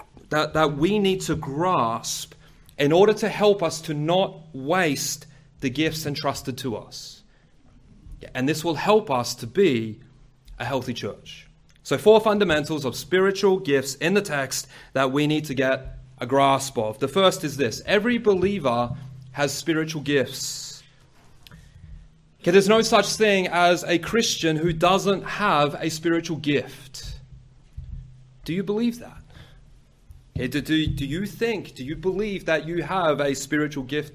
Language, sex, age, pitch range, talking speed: English, male, 30-49, 135-190 Hz, 150 wpm